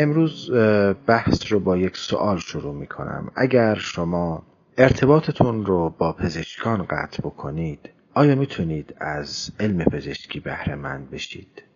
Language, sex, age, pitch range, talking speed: Persian, male, 40-59, 80-115 Hz, 120 wpm